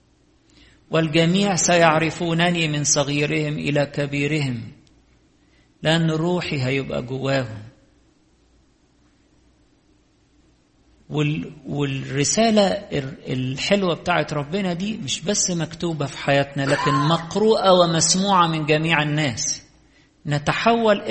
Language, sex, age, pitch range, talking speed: English, male, 50-69, 140-180 Hz, 75 wpm